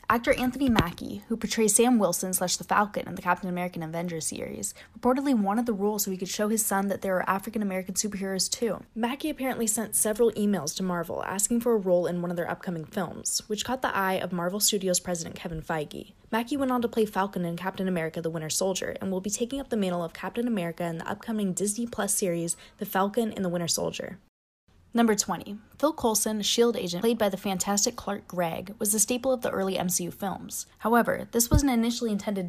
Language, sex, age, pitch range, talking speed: English, female, 10-29, 180-230 Hz, 220 wpm